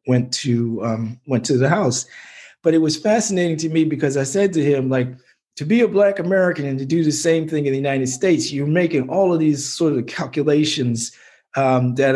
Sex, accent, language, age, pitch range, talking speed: male, American, English, 50-69, 120-155 Hz, 215 wpm